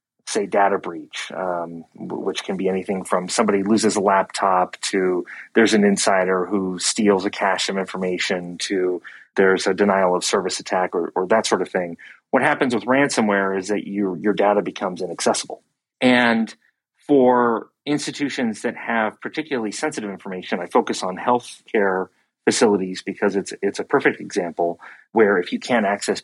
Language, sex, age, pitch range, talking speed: English, male, 30-49, 95-115 Hz, 160 wpm